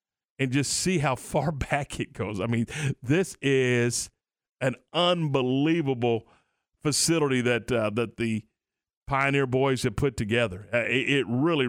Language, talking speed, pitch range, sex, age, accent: English, 135 wpm, 125-175 Hz, male, 50-69, American